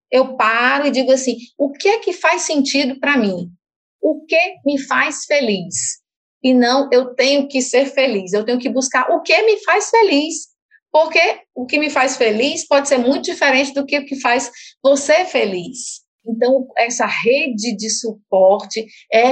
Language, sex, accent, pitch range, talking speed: Portuguese, female, Brazilian, 230-285 Hz, 175 wpm